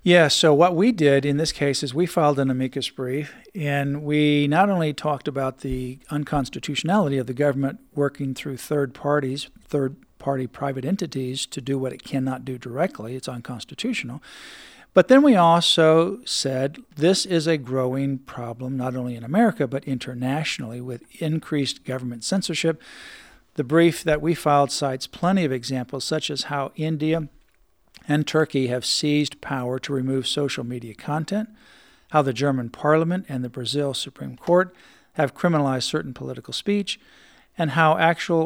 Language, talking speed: English, 160 wpm